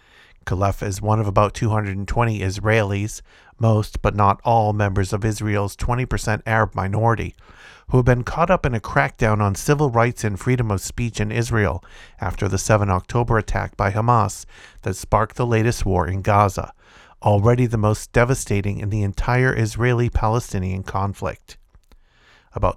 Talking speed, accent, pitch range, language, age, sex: 155 wpm, American, 100-115 Hz, English, 50-69, male